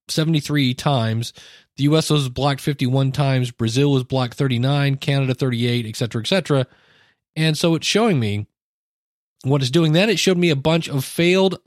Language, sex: English, male